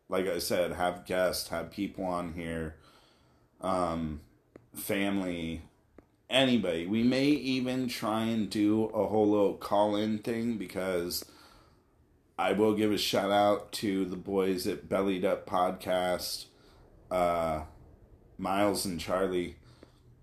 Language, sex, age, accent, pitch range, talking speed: English, male, 30-49, American, 90-110 Hz, 120 wpm